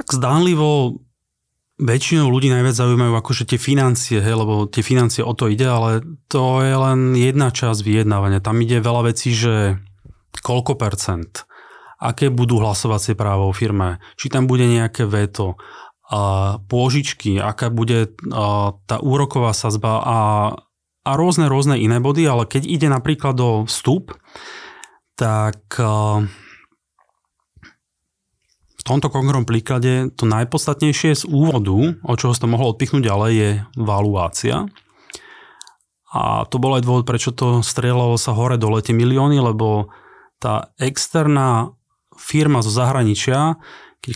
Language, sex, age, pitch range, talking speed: Slovak, male, 30-49, 110-135 Hz, 130 wpm